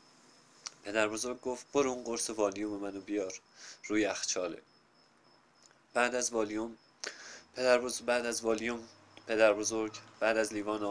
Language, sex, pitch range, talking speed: Persian, male, 105-130 Hz, 105 wpm